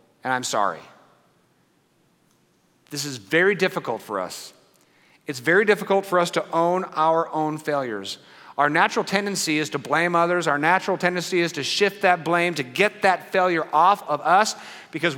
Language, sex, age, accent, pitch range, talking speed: English, male, 40-59, American, 140-200 Hz, 165 wpm